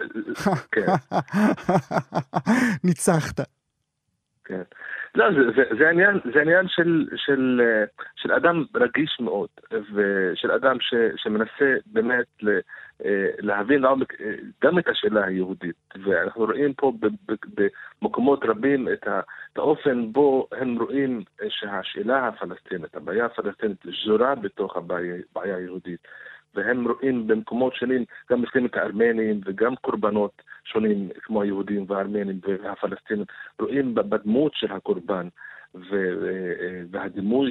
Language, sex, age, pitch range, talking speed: Hebrew, male, 50-69, 95-130 Hz, 90 wpm